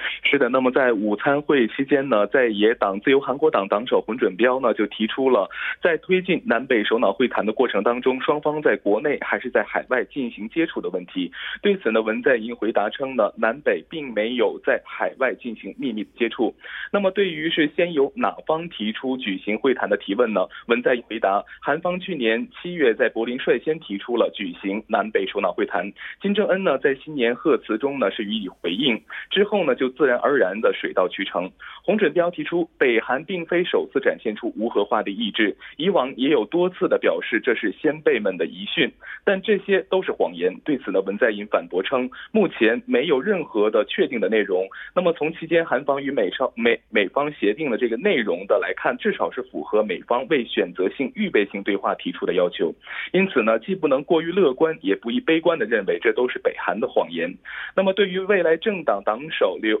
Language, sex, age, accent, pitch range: Korean, male, 20-39, Chinese, 130-205 Hz